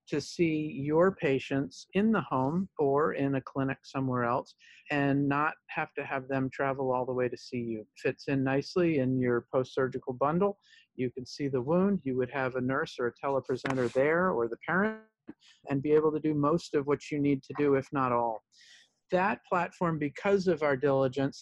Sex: male